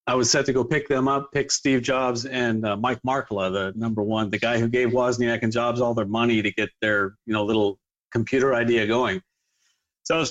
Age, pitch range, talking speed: 40-59, 110-130 Hz, 235 wpm